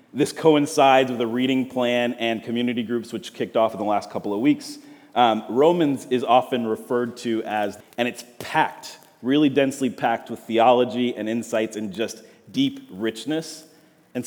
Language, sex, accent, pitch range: English, male, American, 115-140 Hz